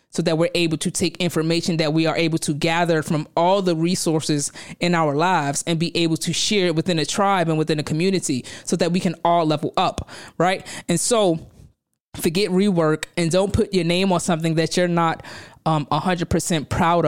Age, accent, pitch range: 20-39, American, 160-185 Hz